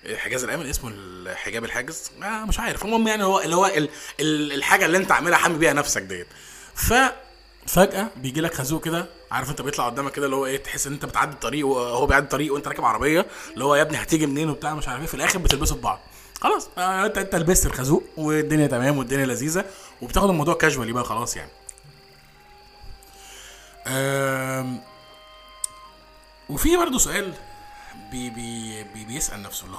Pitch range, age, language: 130-195 Hz, 20-39, Arabic